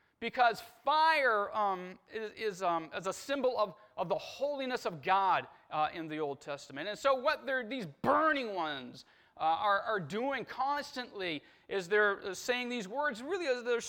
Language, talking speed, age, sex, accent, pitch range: English, 170 wpm, 30-49, male, American, 205-285 Hz